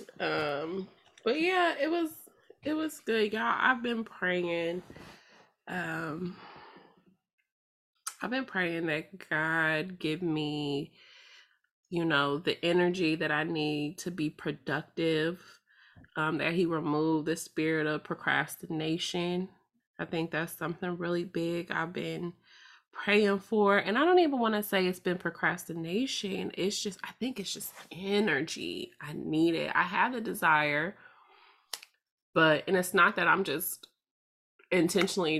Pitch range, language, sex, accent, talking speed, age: 160-200 Hz, English, female, American, 135 wpm, 20-39